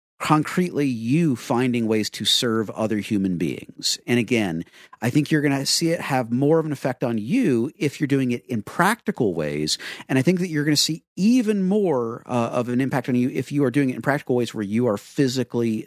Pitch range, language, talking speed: 105-150 Hz, English, 225 wpm